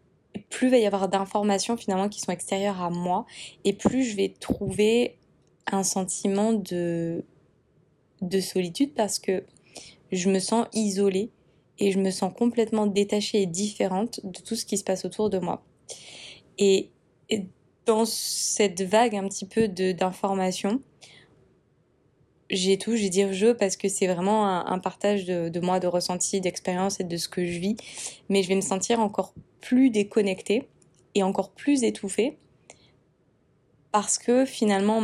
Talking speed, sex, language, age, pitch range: 160 wpm, female, French, 20-39, 190-220 Hz